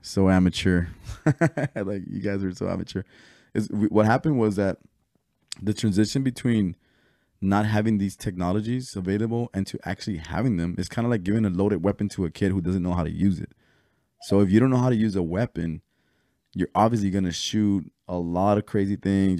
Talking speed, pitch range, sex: 200 wpm, 90-105 Hz, male